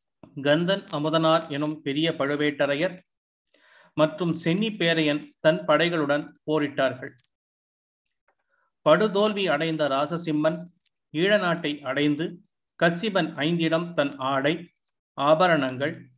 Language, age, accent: Tamil, 30-49, native